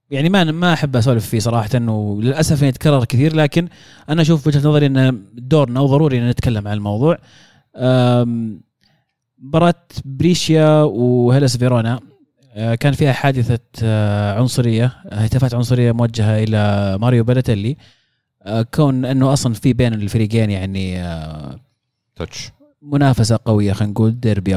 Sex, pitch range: male, 110-140 Hz